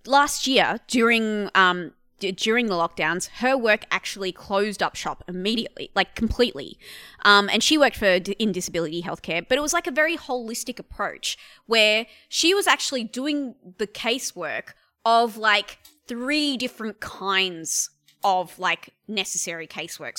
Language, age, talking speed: English, 20-39, 145 wpm